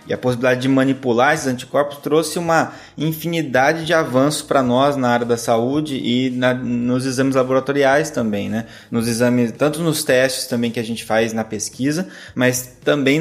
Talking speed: 175 wpm